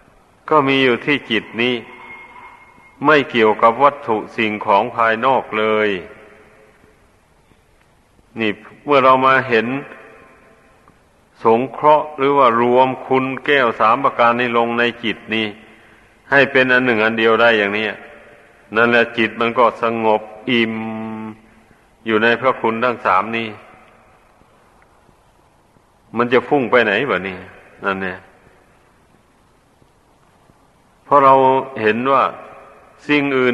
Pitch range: 110-130 Hz